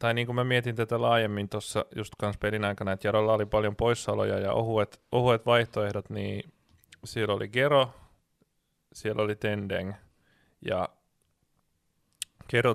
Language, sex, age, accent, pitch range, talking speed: Finnish, male, 20-39, native, 100-110 Hz, 140 wpm